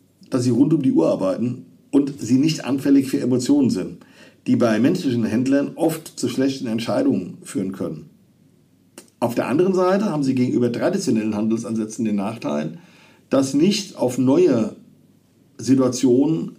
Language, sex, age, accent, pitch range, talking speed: German, male, 50-69, German, 125-195 Hz, 145 wpm